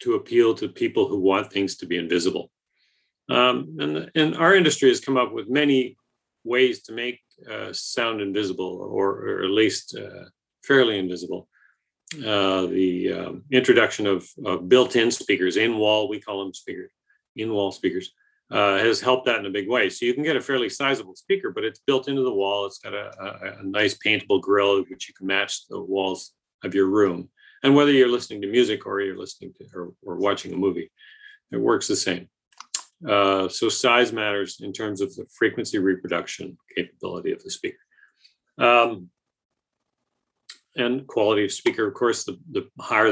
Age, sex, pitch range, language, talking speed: 40-59, male, 100-160 Hz, English, 180 wpm